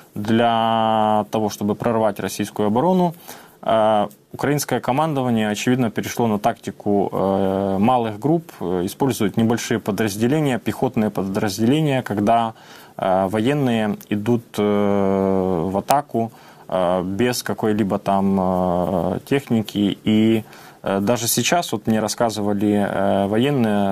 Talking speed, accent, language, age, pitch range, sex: 90 wpm, native, Ukrainian, 20-39, 105-120 Hz, male